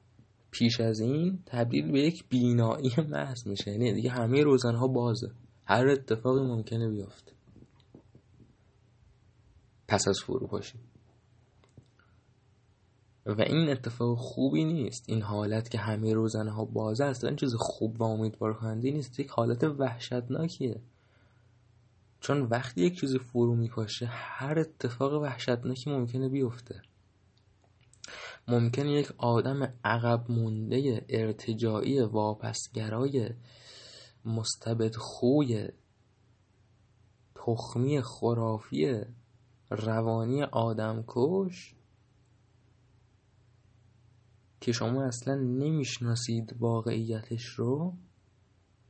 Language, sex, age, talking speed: Persian, male, 20-39, 90 wpm